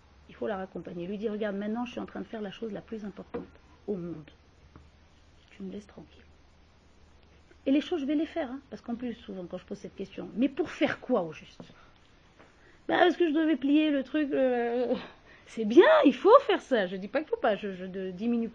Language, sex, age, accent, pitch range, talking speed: French, female, 40-59, French, 205-300 Hz, 235 wpm